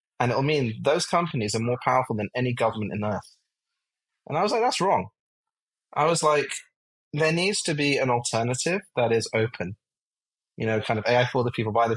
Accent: British